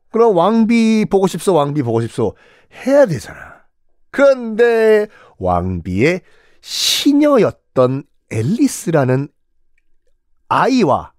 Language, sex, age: Korean, male, 40-59